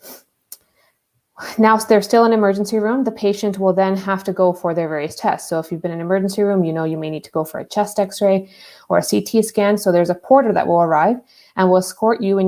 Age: 20-39